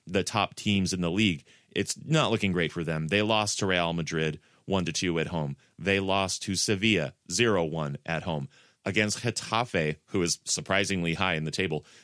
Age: 30-49